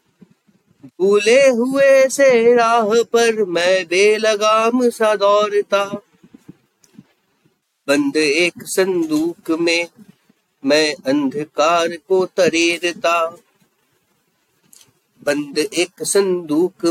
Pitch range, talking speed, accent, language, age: 180-235 Hz, 45 wpm, native, Hindi, 40-59